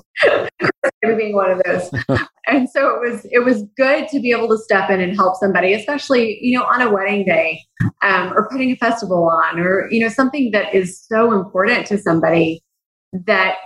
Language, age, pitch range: English, 20-39, 165-205 Hz